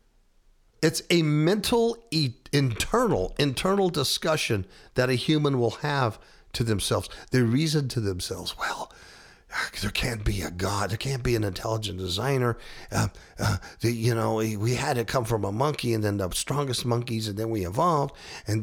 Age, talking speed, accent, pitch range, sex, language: 50-69, 160 wpm, American, 100-140 Hz, male, English